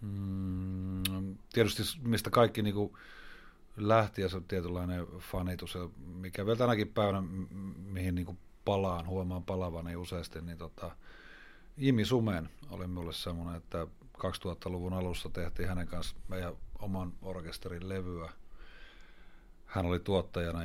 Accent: native